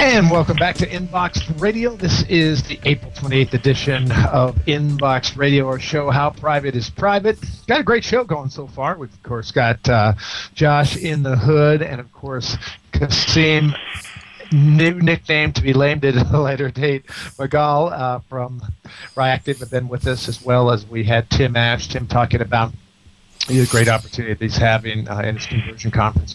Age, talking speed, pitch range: 50-69, 180 wpm, 115-145 Hz